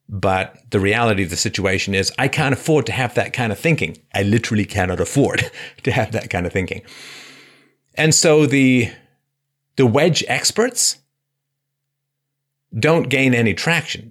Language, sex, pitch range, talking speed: English, male, 105-140 Hz, 155 wpm